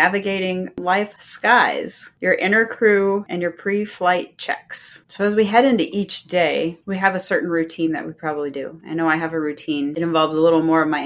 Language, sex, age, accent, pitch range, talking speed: English, female, 30-49, American, 160-190 Hz, 210 wpm